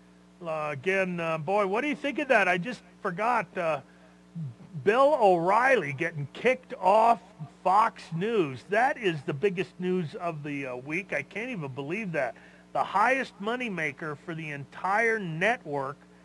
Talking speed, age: 155 wpm, 40-59